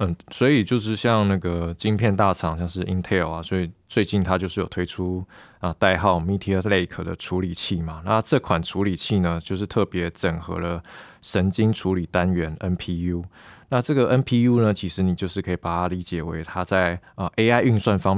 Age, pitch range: 20-39, 85-100 Hz